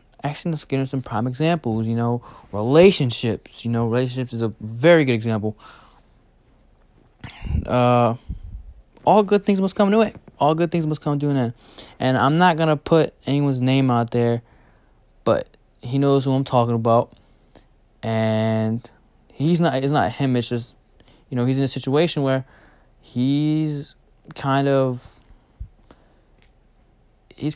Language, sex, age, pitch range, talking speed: English, male, 20-39, 115-140 Hz, 150 wpm